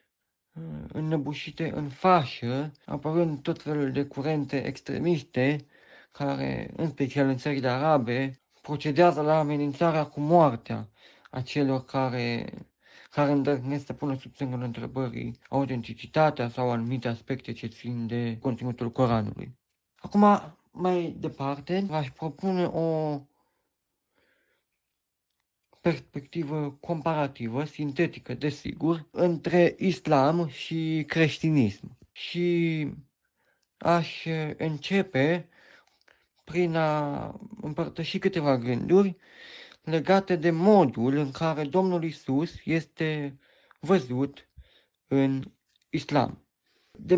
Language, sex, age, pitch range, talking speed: Romanian, male, 50-69, 135-170 Hz, 95 wpm